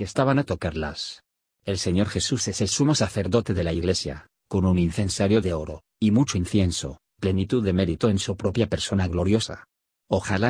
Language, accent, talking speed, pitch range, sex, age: Spanish, Spanish, 170 wpm, 90-110 Hz, male, 40-59